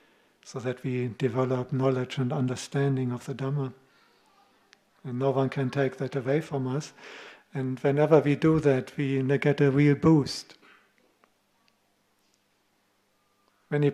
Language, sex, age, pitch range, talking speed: English, male, 50-69, 130-140 Hz, 130 wpm